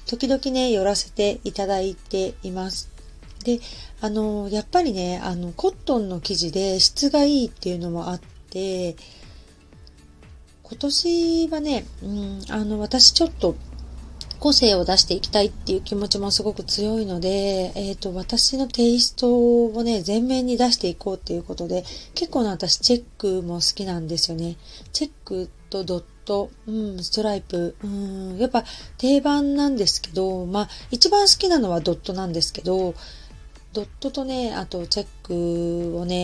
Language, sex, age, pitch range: Japanese, female, 40-59, 180-240 Hz